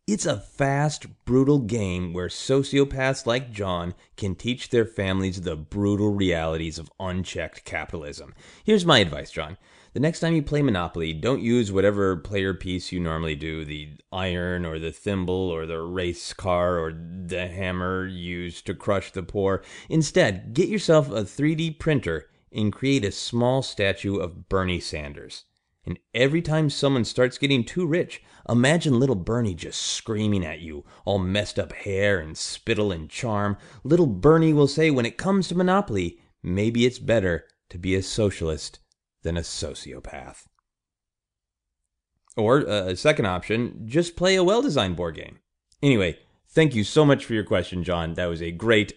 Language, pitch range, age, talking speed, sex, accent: English, 90-130 Hz, 30-49, 165 wpm, male, American